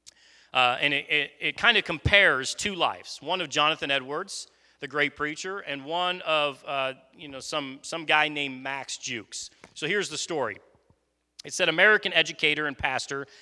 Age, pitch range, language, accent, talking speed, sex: 40-59, 130-165 Hz, English, American, 175 wpm, male